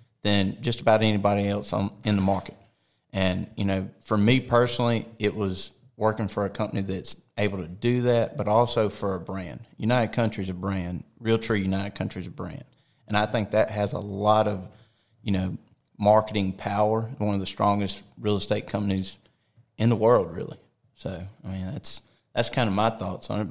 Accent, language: American, English